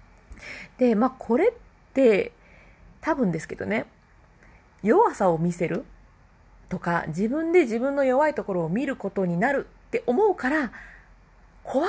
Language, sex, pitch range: Japanese, female, 180-275 Hz